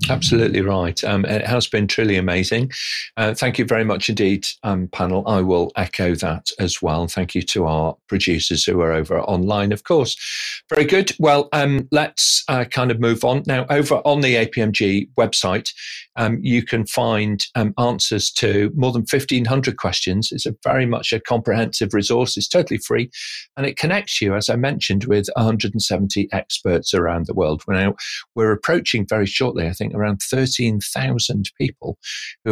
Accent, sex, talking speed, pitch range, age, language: British, male, 175 wpm, 95-125 Hz, 40-59, English